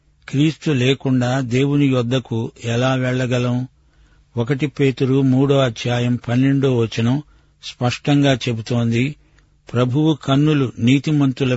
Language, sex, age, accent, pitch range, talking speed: Telugu, male, 50-69, native, 120-140 Hz, 90 wpm